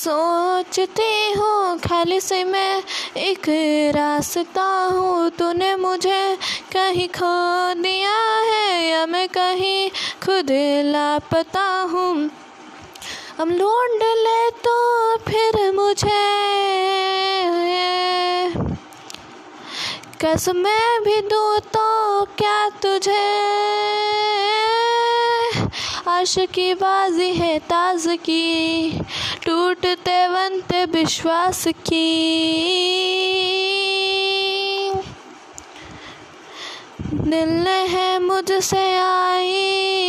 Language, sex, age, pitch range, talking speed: Hindi, female, 20-39, 320-385 Hz, 70 wpm